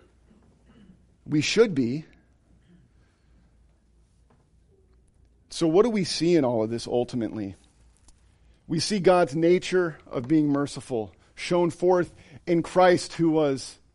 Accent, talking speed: American, 110 wpm